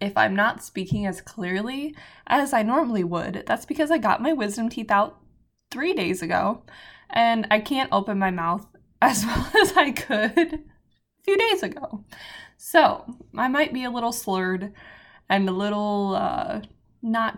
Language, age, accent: English, 20-39, American